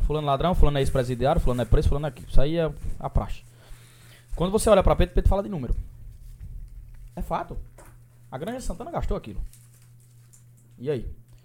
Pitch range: 120-150 Hz